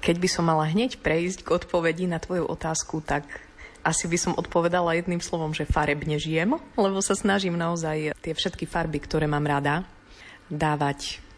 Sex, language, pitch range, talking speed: female, Slovak, 145-170 Hz, 170 wpm